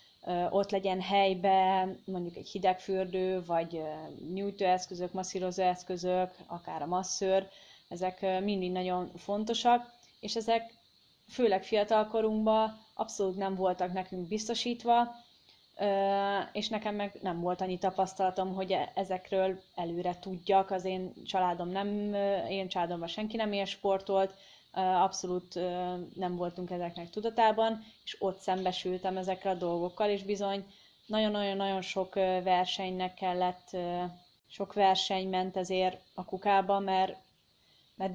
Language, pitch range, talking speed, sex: Hungarian, 180-200 Hz, 115 wpm, female